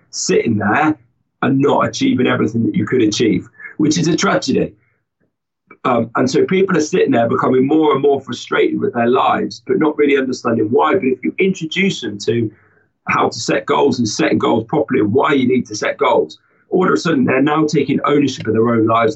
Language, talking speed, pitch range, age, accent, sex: English, 210 wpm, 115-175 Hz, 30-49, British, male